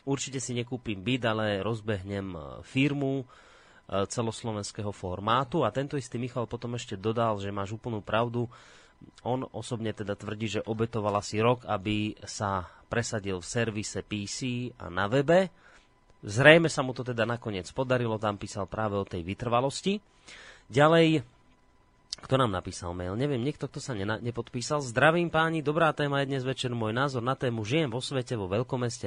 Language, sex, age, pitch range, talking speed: Slovak, male, 30-49, 105-135 Hz, 160 wpm